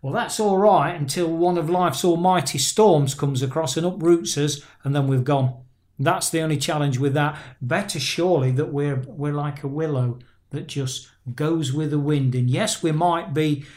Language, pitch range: English, 140-180 Hz